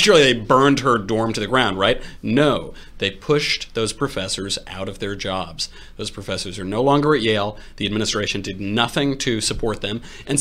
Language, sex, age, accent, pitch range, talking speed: English, male, 30-49, American, 100-130 Hz, 190 wpm